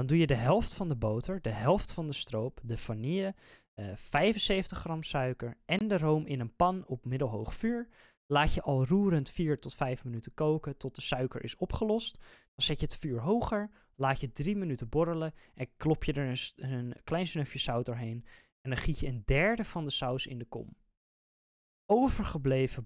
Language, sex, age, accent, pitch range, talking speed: Dutch, male, 20-39, Dutch, 120-165 Hz, 200 wpm